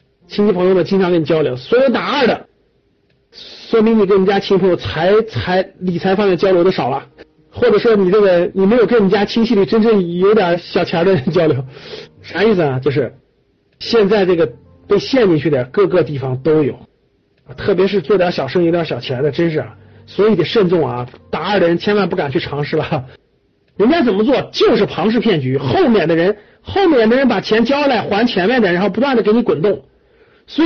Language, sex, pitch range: Chinese, male, 180-255 Hz